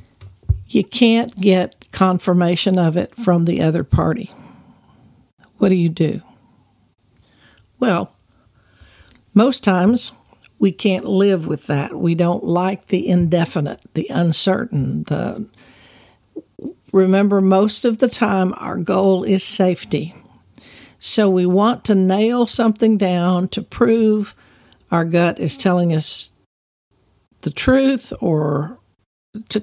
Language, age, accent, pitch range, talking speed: English, 60-79, American, 160-210 Hz, 115 wpm